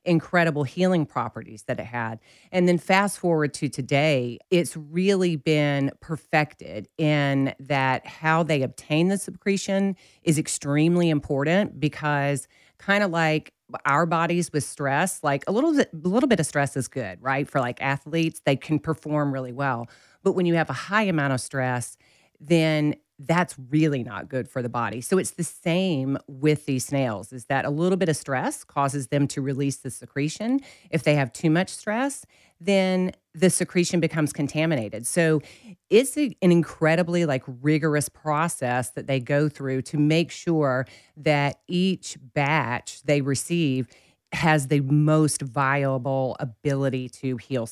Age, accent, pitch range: 40-59, American, 135-170 Hz